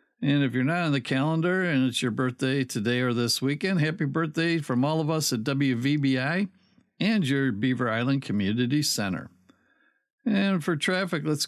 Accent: American